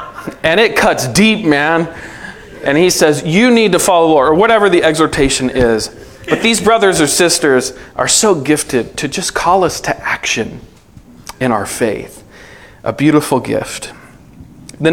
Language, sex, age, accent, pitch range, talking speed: English, male, 40-59, American, 130-175 Hz, 160 wpm